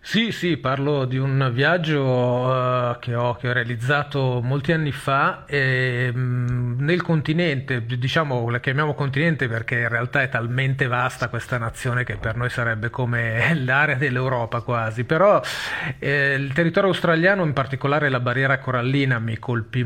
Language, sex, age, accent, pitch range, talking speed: Italian, male, 40-59, native, 125-150 Hz, 145 wpm